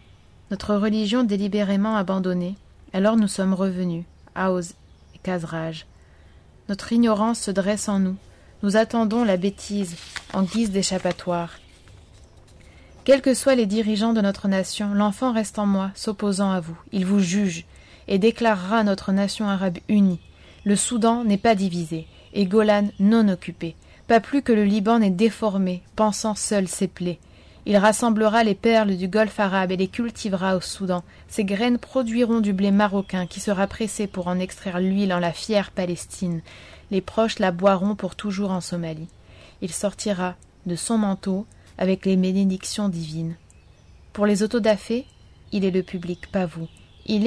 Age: 20-39